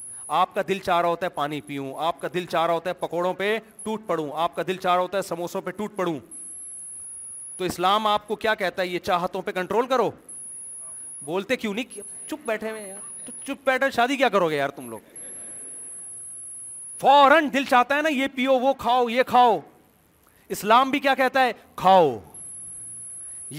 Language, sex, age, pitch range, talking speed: Urdu, male, 40-59, 175-235 Hz, 195 wpm